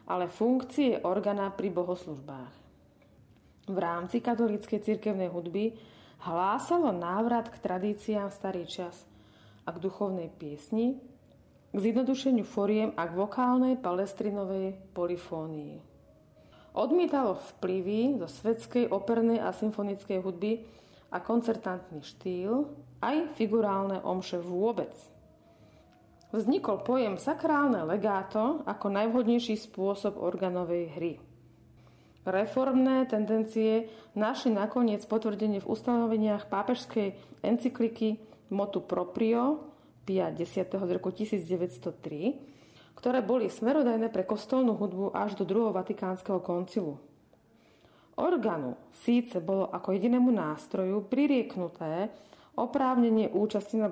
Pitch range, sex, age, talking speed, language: 185-230 Hz, female, 40-59, 95 wpm, Slovak